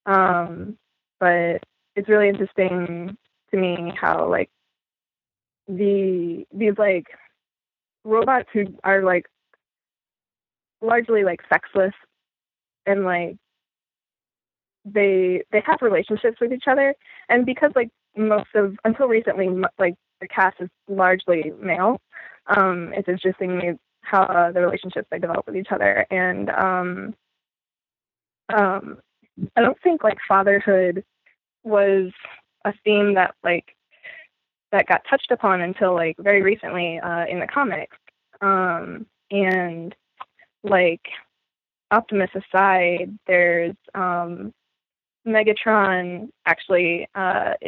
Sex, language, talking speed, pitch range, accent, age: female, English, 110 wpm, 180-210 Hz, American, 20-39